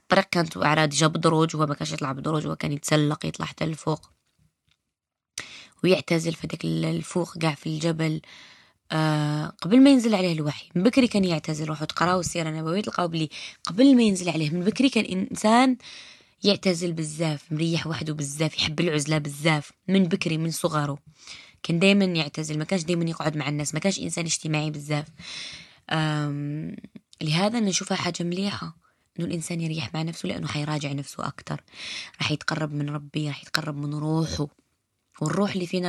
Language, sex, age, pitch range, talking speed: Arabic, female, 20-39, 150-190 Hz, 160 wpm